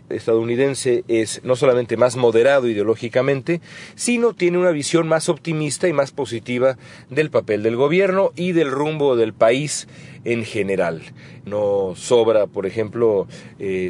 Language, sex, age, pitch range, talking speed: English, male, 40-59, 115-170 Hz, 140 wpm